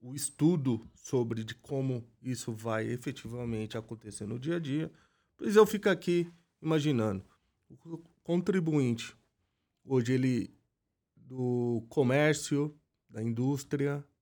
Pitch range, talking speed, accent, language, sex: 120-160 Hz, 110 wpm, Brazilian, Portuguese, male